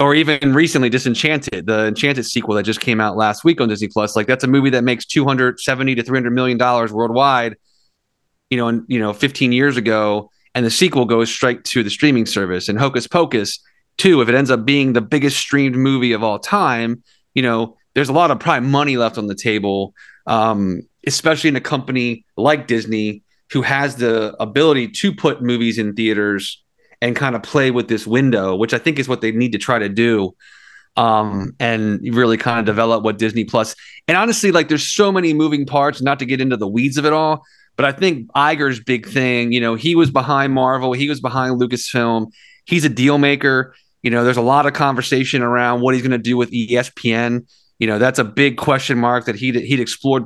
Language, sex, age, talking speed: English, male, 30-49, 215 wpm